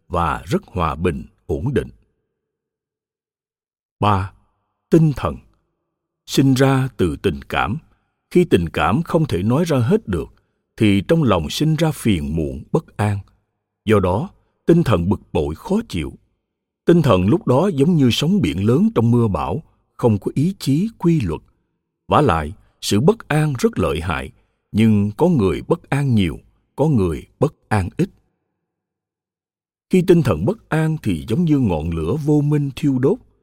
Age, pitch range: 60-79, 100-155 Hz